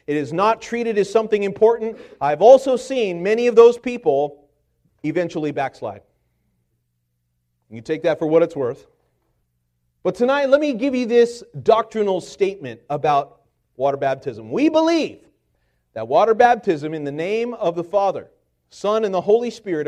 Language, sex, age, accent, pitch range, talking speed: English, male, 40-59, American, 155-240 Hz, 155 wpm